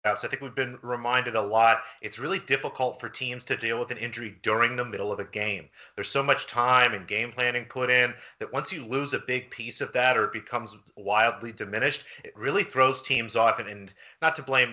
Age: 30-49